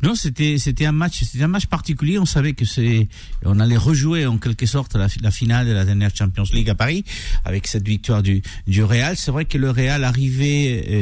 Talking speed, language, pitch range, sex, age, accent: 225 wpm, French, 105-145 Hz, male, 50-69, French